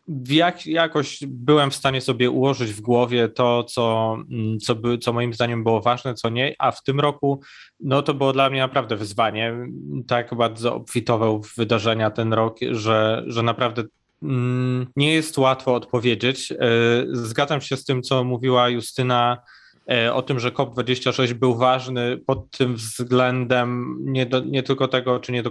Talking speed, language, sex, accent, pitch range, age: 150 wpm, Polish, male, native, 120-135 Hz, 20-39